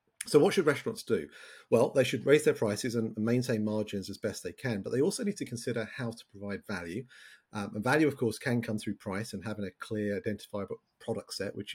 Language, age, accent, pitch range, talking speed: English, 40-59, British, 105-130 Hz, 230 wpm